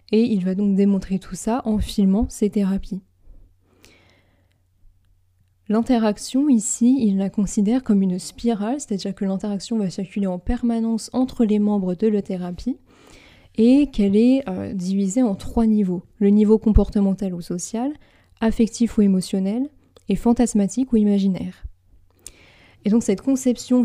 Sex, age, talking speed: female, 20-39, 140 wpm